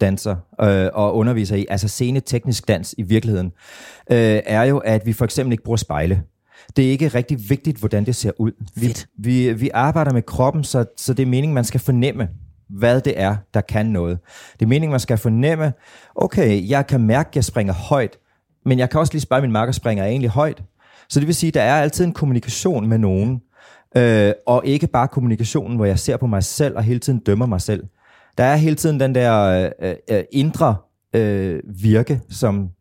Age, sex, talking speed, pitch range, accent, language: 30-49, male, 205 wpm, 100-130 Hz, native, Danish